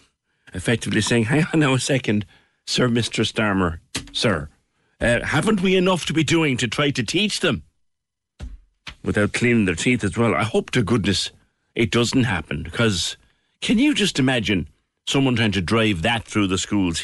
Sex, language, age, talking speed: male, English, 60-79, 175 wpm